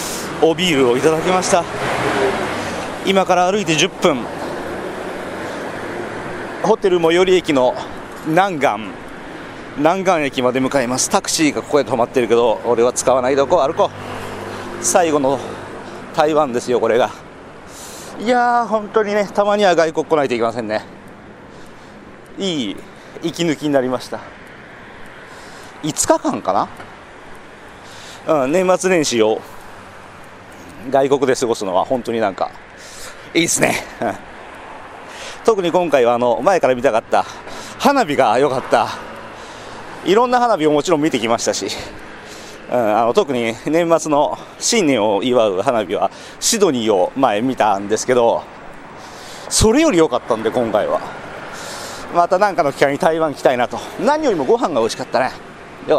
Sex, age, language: male, 40-59, Japanese